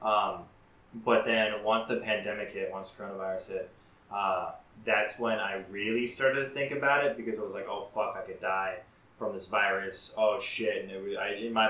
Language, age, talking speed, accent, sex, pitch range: English, 20-39, 205 wpm, American, male, 95-110 Hz